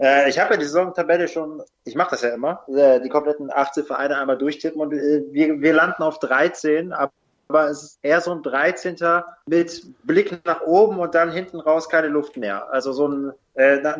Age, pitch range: 30-49, 140-175 Hz